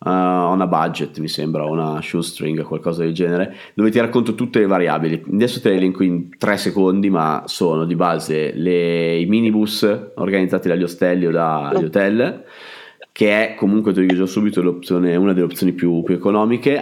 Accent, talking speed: native, 180 wpm